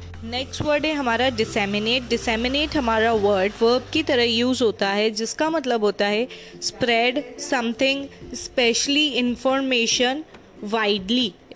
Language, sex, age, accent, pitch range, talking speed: Hindi, female, 20-39, native, 225-275 Hz, 120 wpm